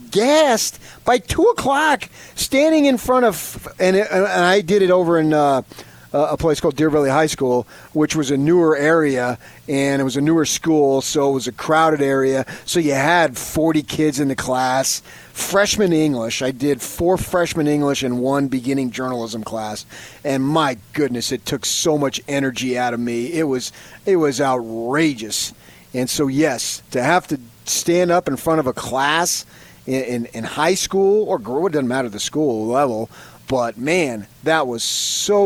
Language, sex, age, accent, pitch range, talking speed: English, male, 30-49, American, 130-180 Hz, 185 wpm